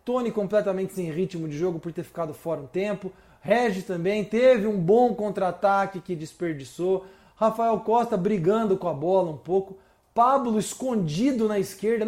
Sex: male